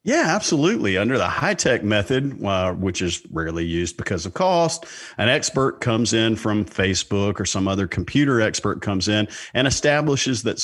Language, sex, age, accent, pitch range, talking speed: English, male, 50-69, American, 95-130 Hz, 175 wpm